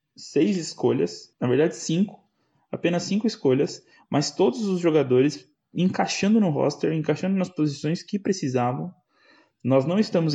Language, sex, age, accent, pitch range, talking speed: Portuguese, male, 20-39, Brazilian, 125-165 Hz, 135 wpm